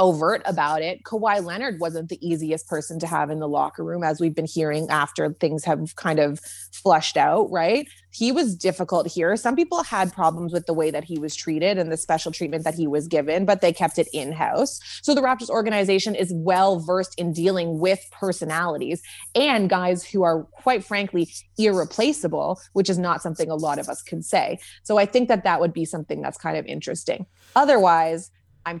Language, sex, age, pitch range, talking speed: English, female, 20-39, 160-195 Hz, 200 wpm